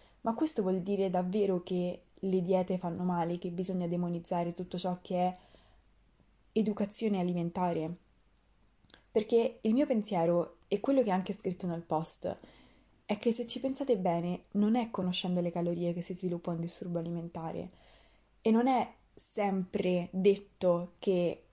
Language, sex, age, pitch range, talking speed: Italian, female, 20-39, 175-210 Hz, 150 wpm